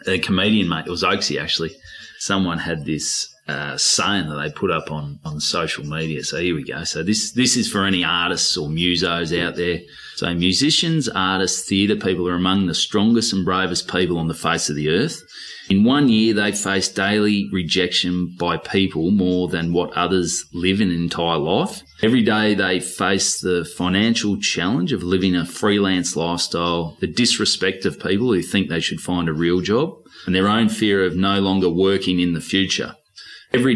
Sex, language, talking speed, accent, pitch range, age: male, English, 190 wpm, Australian, 85-105 Hz, 30-49